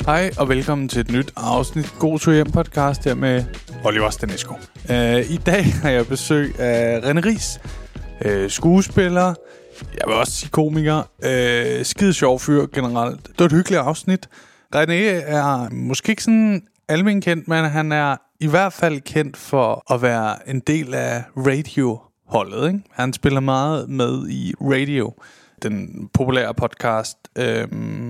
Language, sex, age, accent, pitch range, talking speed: Danish, male, 20-39, native, 125-165 Hz, 150 wpm